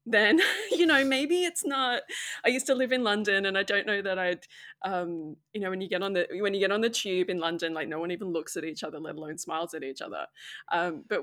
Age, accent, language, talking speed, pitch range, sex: 20-39, Australian, English, 265 wpm, 170-240 Hz, female